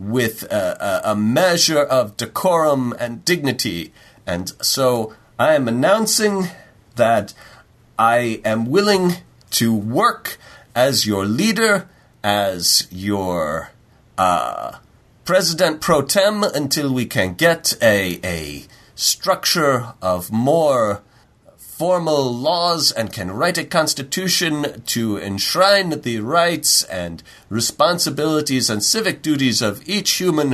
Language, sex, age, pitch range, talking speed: English, male, 40-59, 110-180 Hz, 110 wpm